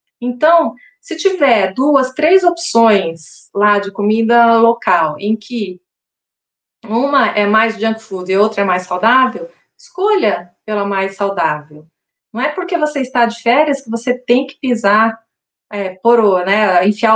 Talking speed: 145 wpm